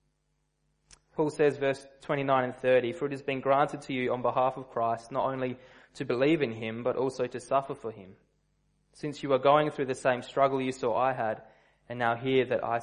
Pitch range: 120-145 Hz